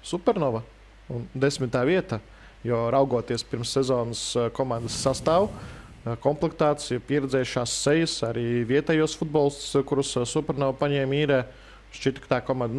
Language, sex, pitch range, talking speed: English, male, 120-145 Hz, 115 wpm